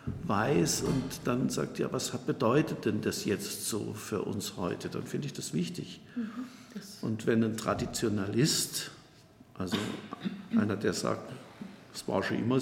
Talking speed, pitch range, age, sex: 150 wpm, 95-130 Hz, 50-69, male